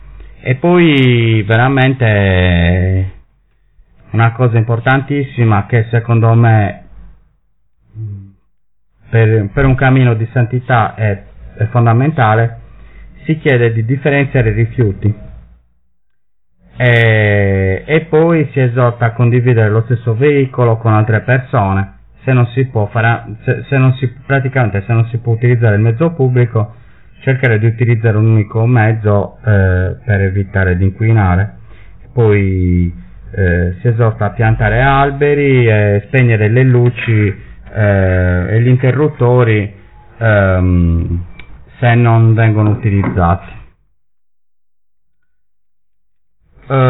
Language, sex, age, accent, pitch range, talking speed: Italian, male, 30-49, native, 100-125 Hz, 110 wpm